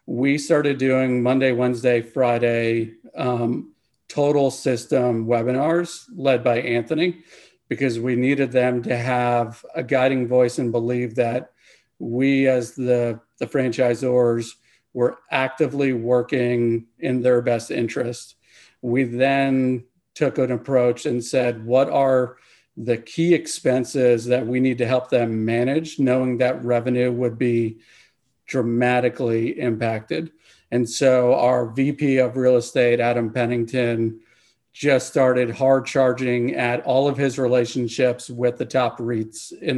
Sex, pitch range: male, 120-130 Hz